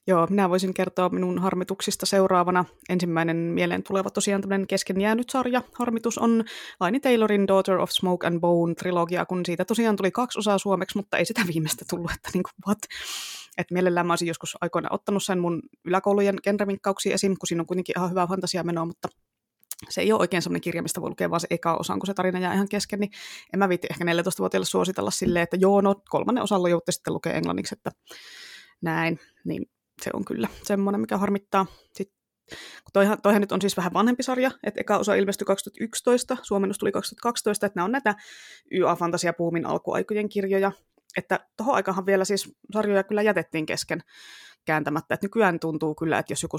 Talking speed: 180 wpm